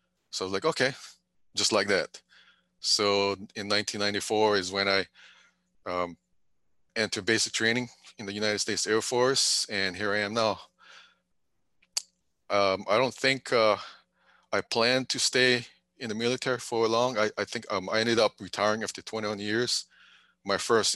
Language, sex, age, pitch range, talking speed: English, male, 30-49, 95-110 Hz, 160 wpm